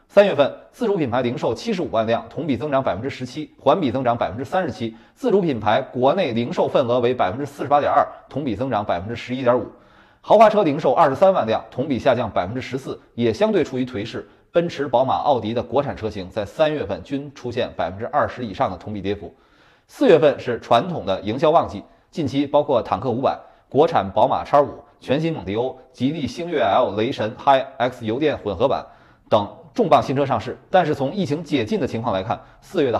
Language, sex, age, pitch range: Chinese, male, 30-49, 115-150 Hz